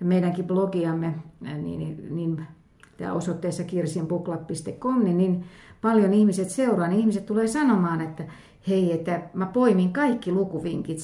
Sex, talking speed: female, 130 wpm